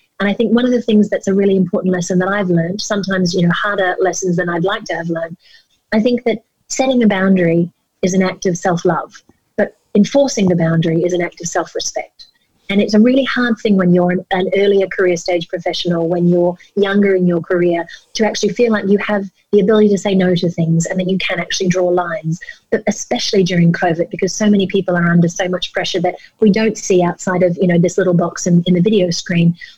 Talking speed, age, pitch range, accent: 230 wpm, 30-49, 175-205 Hz, Australian